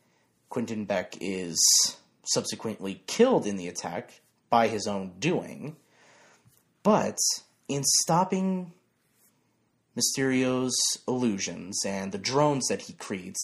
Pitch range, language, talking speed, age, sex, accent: 105-135 Hz, English, 105 wpm, 30-49, male, American